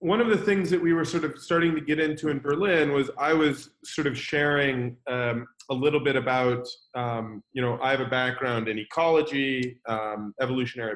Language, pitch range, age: English, 115-140 Hz, 30-49